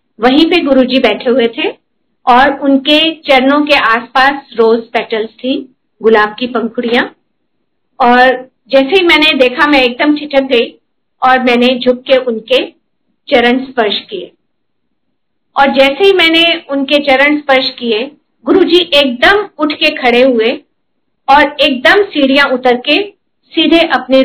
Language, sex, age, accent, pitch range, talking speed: Hindi, female, 50-69, native, 245-290 Hz, 135 wpm